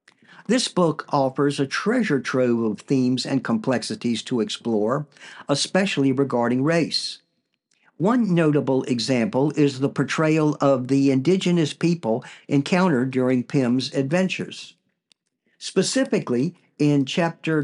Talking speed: 110 wpm